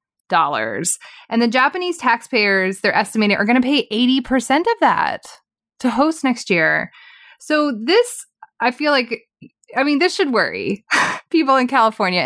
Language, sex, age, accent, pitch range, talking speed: English, female, 20-39, American, 185-250 Hz, 145 wpm